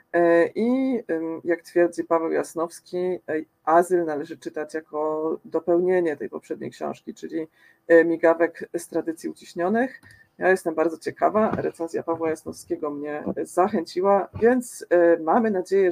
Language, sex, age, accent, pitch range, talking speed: Polish, female, 40-59, native, 160-185 Hz, 115 wpm